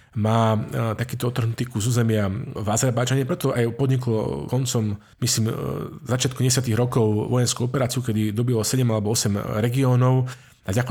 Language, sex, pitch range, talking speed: Slovak, male, 110-130 Hz, 125 wpm